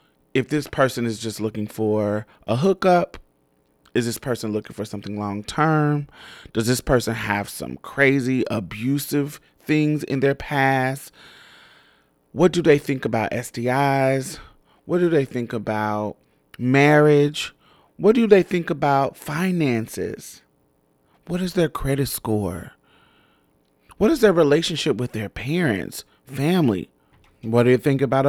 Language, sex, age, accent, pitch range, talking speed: English, male, 30-49, American, 105-145 Hz, 135 wpm